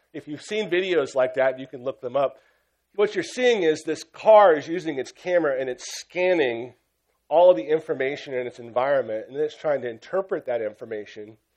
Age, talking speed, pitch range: 40-59, 200 wpm, 125-185 Hz